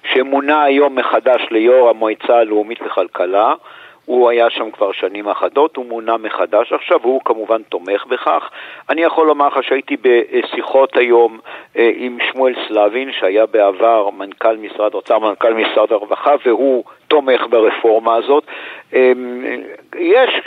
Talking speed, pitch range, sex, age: 135 wpm, 125-195 Hz, male, 50-69